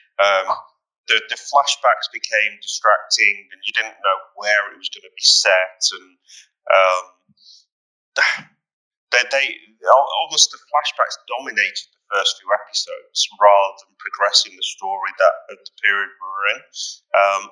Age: 30-49